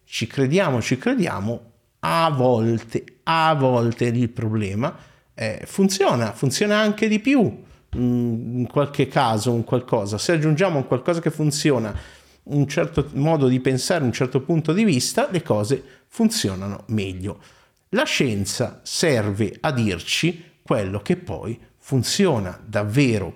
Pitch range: 115-155 Hz